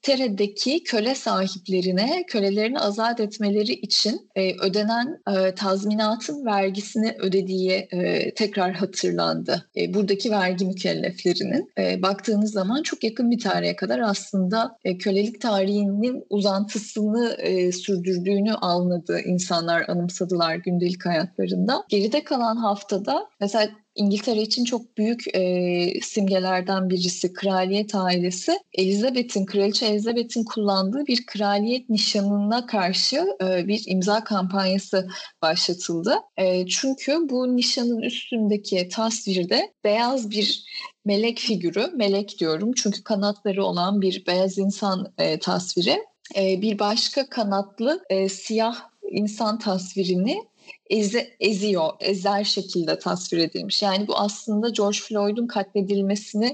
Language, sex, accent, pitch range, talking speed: Turkish, female, native, 190-230 Hz, 105 wpm